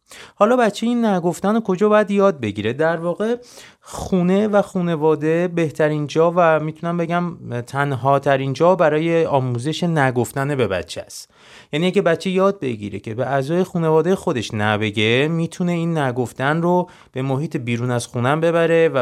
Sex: male